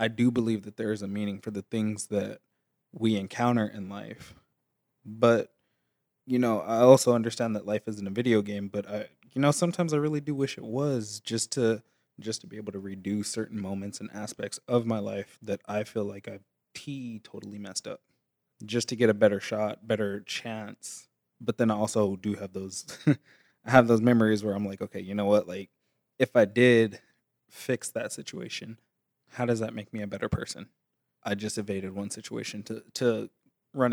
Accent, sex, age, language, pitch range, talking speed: American, male, 20-39, English, 105-125 Hz, 195 wpm